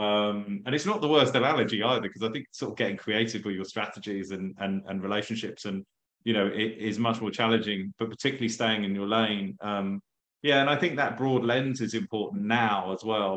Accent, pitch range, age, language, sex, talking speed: British, 105-120 Hz, 20-39, English, male, 225 wpm